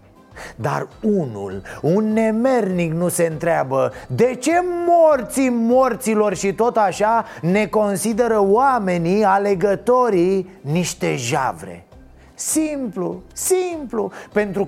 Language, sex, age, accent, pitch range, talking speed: Romanian, male, 30-49, native, 160-215 Hz, 95 wpm